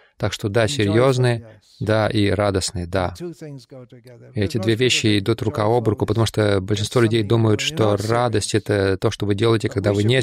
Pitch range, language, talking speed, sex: 105-140 Hz, Russian, 175 wpm, male